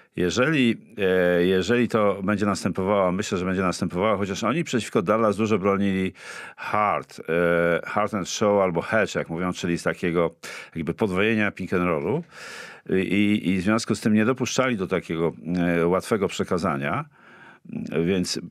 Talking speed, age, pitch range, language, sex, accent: 145 wpm, 50-69, 85-110 Hz, Polish, male, native